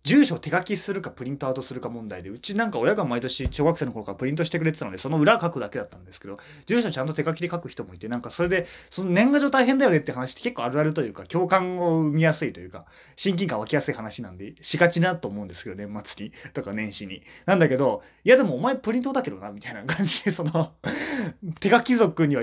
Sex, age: male, 20-39